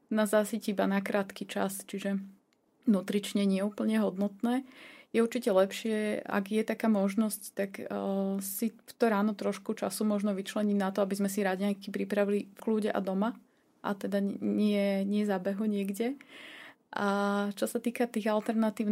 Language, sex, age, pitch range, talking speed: Slovak, female, 30-49, 200-225 Hz, 160 wpm